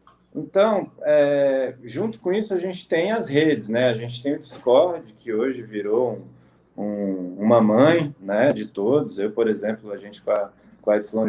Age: 20-39